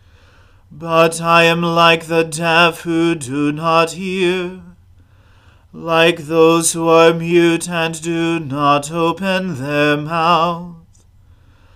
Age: 30-49